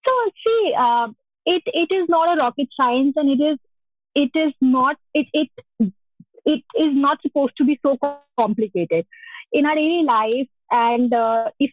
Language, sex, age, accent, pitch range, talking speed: English, female, 20-39, Indian, 235-295 Hz, 170 wpm